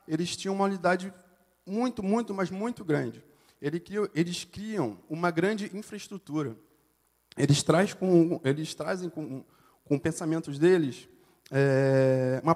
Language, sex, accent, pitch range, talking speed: Portuguese, male, Brazilian, 155-195 Hz, 100 wpm